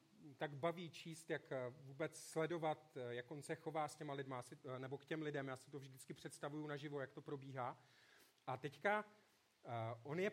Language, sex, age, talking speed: Czech, male, 40-59, 175 wpm